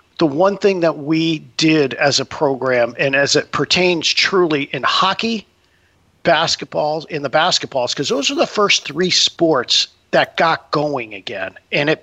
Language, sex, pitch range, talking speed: English, male, 145-190 Hz, 165 wpm